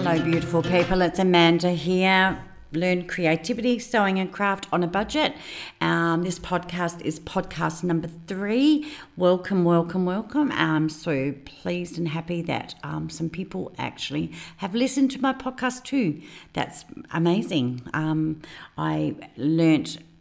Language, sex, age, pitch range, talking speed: English, female, 50-69, 160-195 Hz, 135 wpm